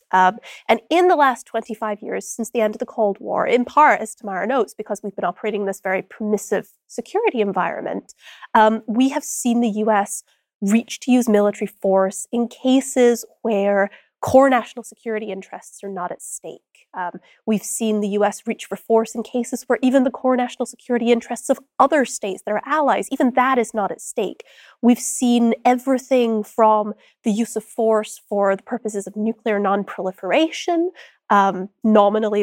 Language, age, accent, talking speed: English, 20-39, American, 175 wpm